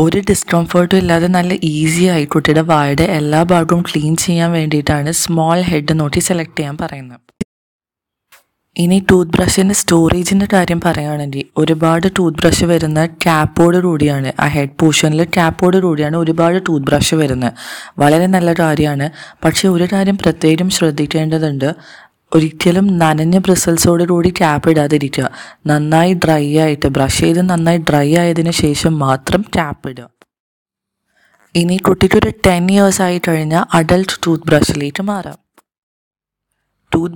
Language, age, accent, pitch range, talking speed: Malayalam, 20-39, native, 155-185 Hz, 125 wpm